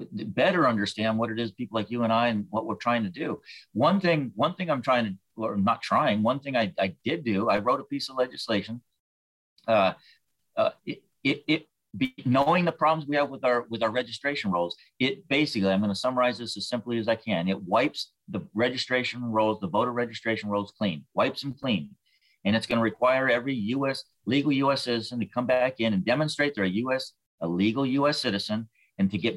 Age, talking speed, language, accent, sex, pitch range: 40-59, 215 wpm, English, American, male, 110-135 Hz